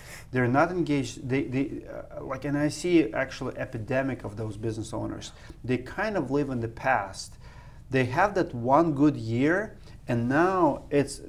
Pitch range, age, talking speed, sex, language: 120-150 Hz, 40-59, 170 wpm, male, English